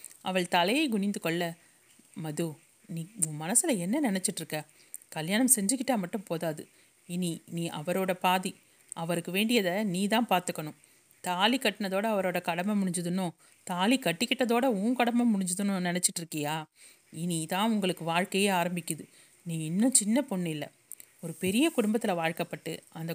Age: 30-49